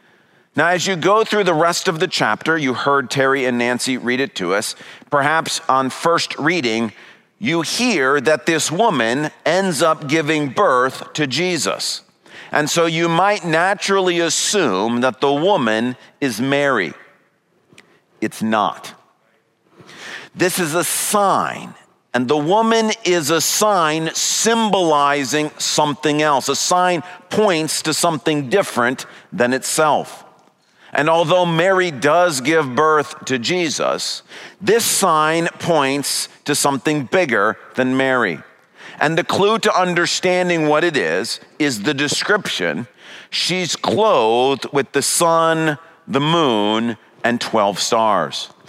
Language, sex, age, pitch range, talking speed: English, male, 40-59, 140-185 Hz, 130 wpm